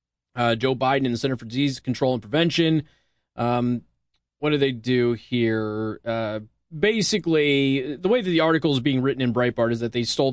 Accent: American